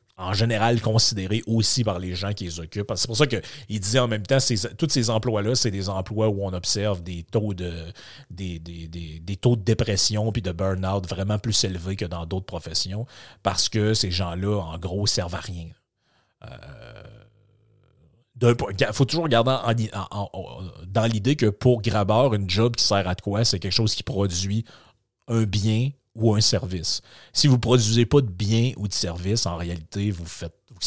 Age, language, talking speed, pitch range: 30-49, French, 200 wpm, 95-120 Hz